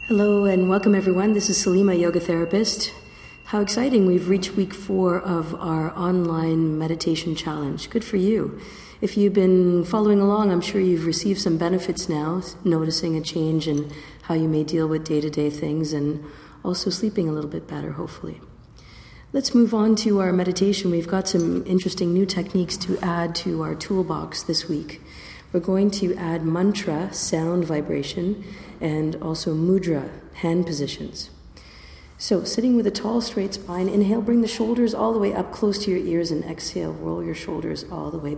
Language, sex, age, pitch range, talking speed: English, female, 50-69, 160-195 Hz, 175 wpm